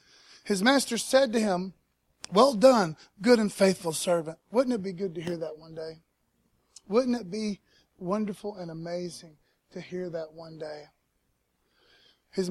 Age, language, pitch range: 30-49, English, 175-215 Hz